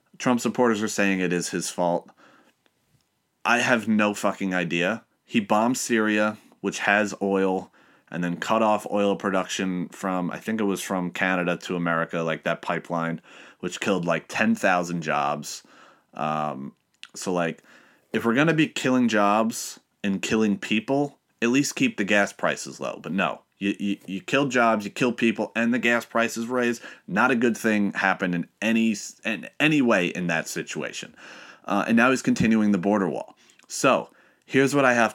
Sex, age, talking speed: male, 30-49, 175 wpm